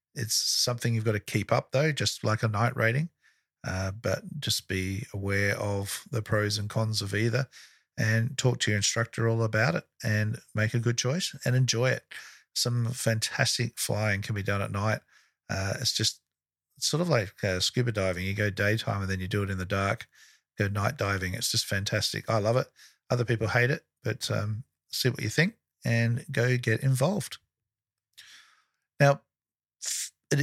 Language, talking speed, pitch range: English, 185 wpm, 105-130 Hz